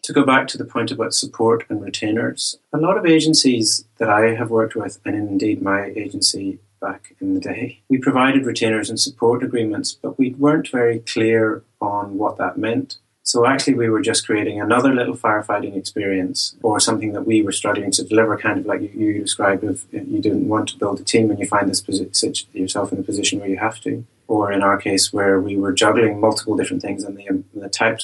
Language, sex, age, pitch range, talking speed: English, male, 30-49, 95-115 Hz, 210 wpm